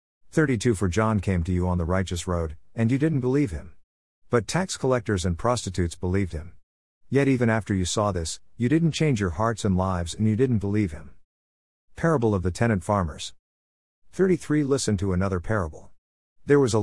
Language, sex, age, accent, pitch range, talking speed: English, male, 50-69, American, 85-125 Hz, 190 wpm